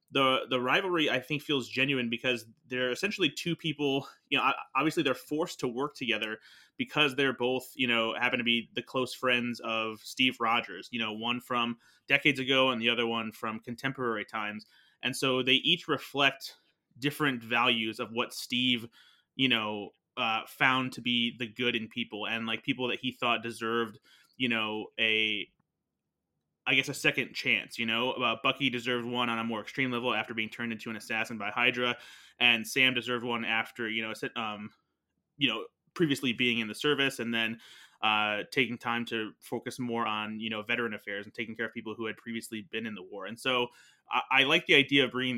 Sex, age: male, 20-39